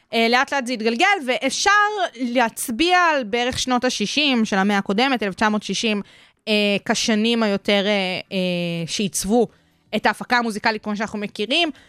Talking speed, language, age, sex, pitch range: 130 wpm, Hebrew, 20-39, female, 195-240 Hz